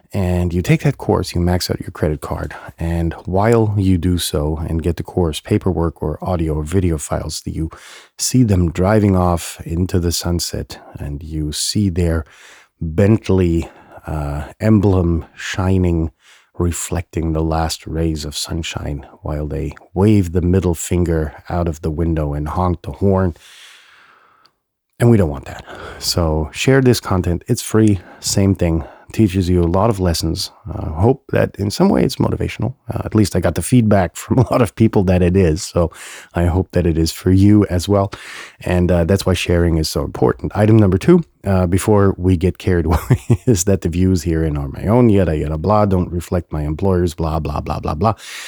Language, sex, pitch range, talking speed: English, male, 80-100 Hz, 185 wpm